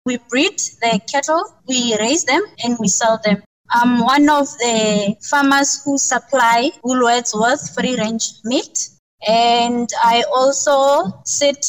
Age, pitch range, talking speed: 20-39, 215-255 Hz, 130 wpm